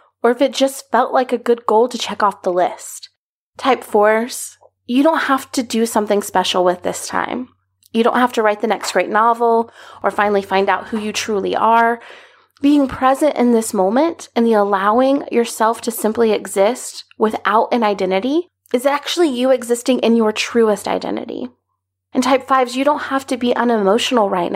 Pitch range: 215-270 Hz